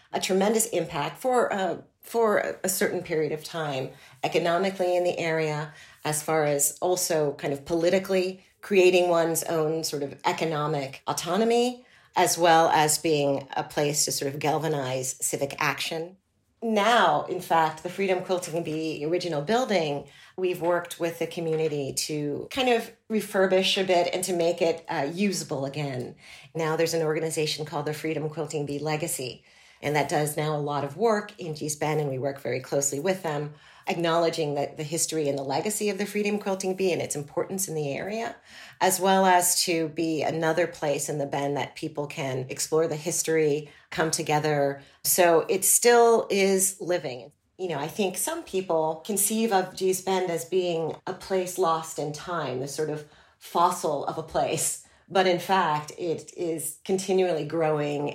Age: 40-59